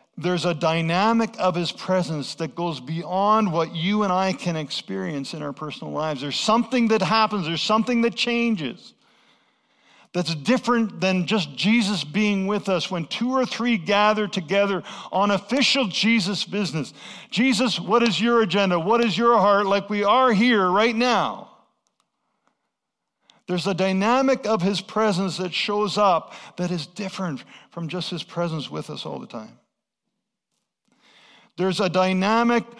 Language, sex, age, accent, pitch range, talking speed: English, male, 50-69, American, 185-235 Hz, 155 wpm